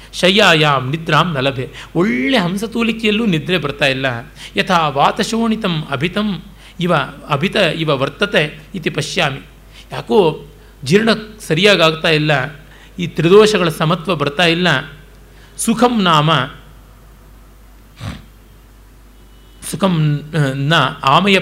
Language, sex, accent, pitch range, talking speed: Kannada, male, native, 145-200 Hz, 85 wpm